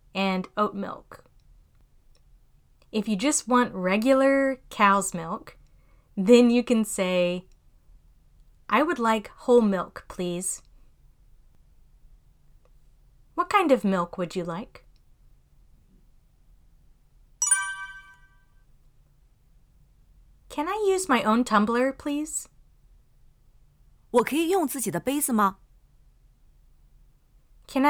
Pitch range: 195-250 Hz